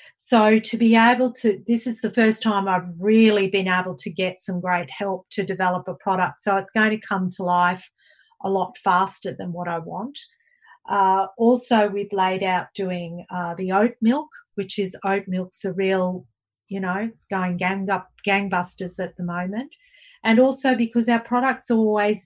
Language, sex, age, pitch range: English, female, 40-59, 180-225 Hz